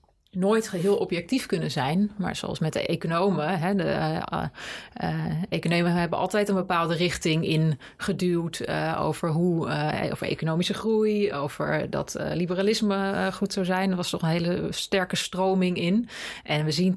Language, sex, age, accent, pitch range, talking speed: Dutch, female, 30-49, Dutch, 165-200 Hz, 165 wpm